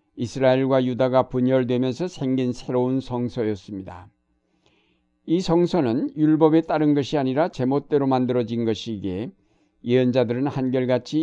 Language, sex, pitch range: Korean, male, 115-145 Hz